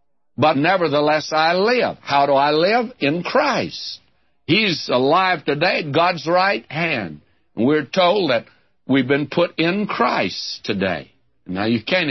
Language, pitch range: English, 120-170 Hz